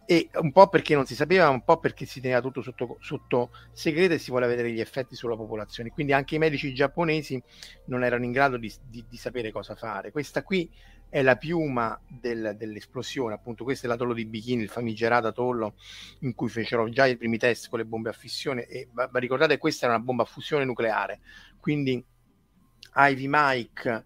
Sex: male